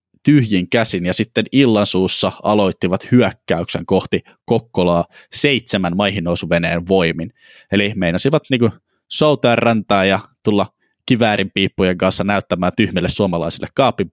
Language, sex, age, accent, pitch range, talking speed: Finnish, male, 20-39, native, 95-130 Hz, 115 wpm